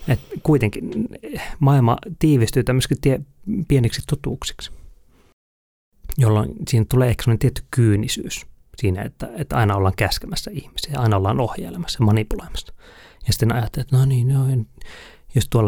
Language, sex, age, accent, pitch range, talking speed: Finnish, male, 30-49, native, 105-140 Hz, 130 wpm